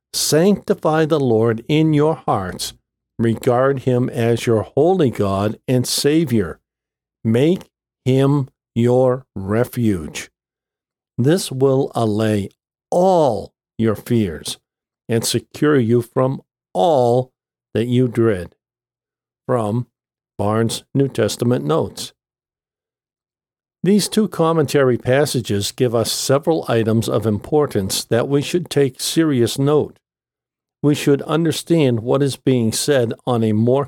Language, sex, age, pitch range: English, male, 50-69, 115-145 Hz